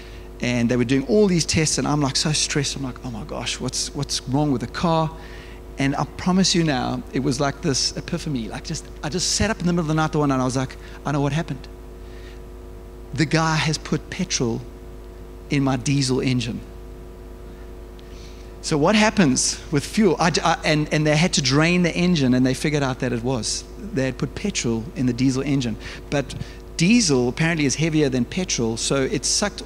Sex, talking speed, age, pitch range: male, 205 wpm, 30-49, 120-165 Hz